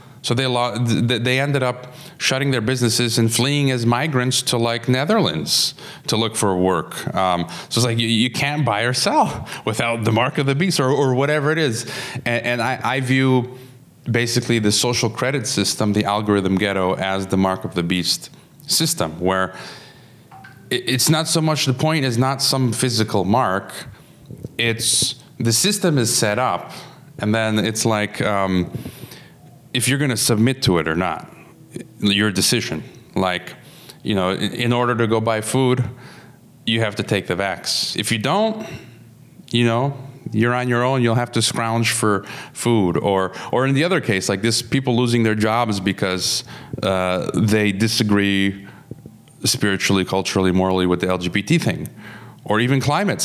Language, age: English, 30-49